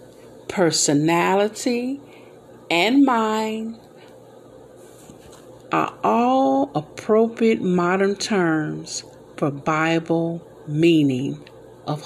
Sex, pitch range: female, 195-285 Hz